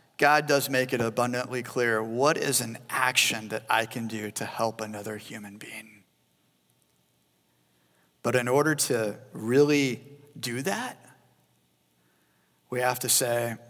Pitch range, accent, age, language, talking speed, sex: 105-130 Hz, American, 40-59, English, 130 wpm, male